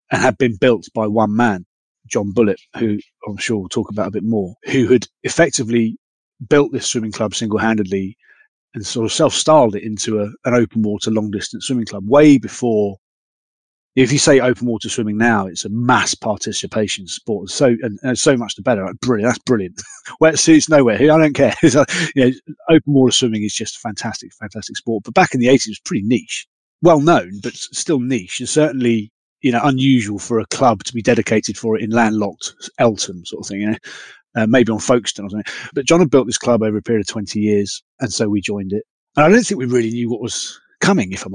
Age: 30-49